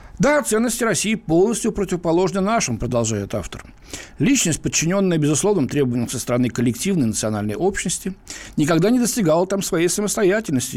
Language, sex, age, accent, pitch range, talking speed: Russian, male, 60-79, native, 125-200 Hz, 130 wpm